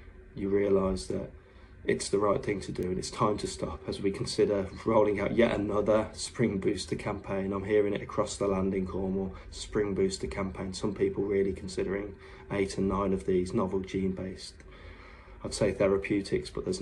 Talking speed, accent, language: 180 wpm, British, Italian